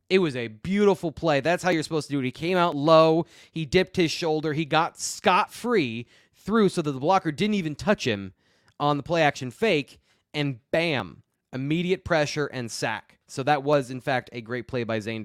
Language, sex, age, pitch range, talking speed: English, male, 20-39, 130-175 Hz, 210 wpm